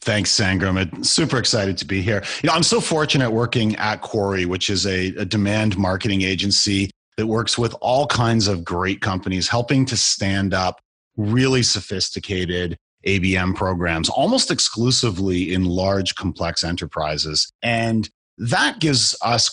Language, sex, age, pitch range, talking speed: English, male, 30-49, 95-120 Hz, 150 wpm